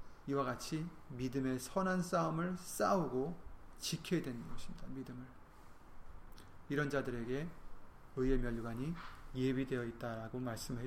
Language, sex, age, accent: Korean, male, 30-49, native